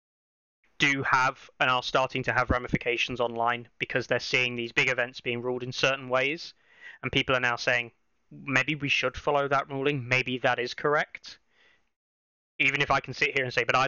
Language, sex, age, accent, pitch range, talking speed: English, male, 20-39, British, 125-140 Hz, 195 wpm